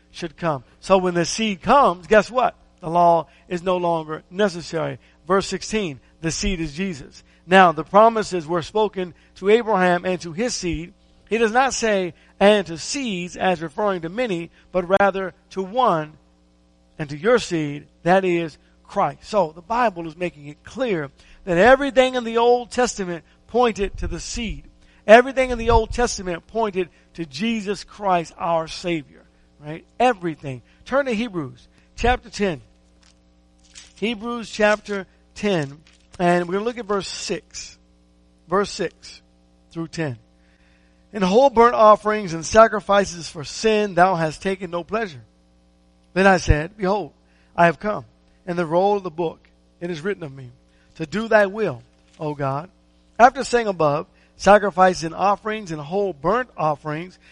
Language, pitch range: English, 150-210 Hz